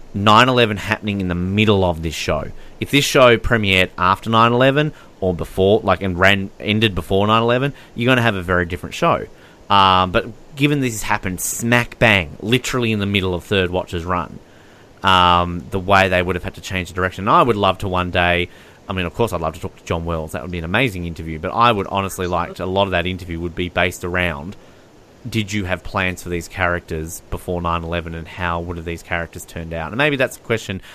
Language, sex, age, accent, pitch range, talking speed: English, male, 30-49, Australian, 85-110 Hz, 230 wpm